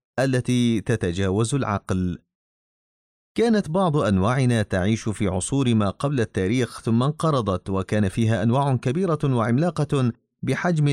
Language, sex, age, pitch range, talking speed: Arabic, male, 40-59, 100-130 Hz, 110 wpm